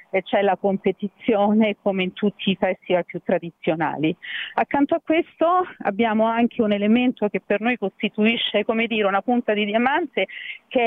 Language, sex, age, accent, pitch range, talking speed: Italian, female, 40-59, native, 200-235 Hz, 160 wpm